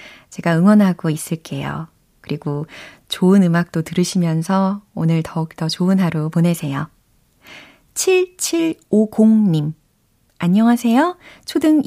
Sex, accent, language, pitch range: female, native, Korean, 165-245 Hz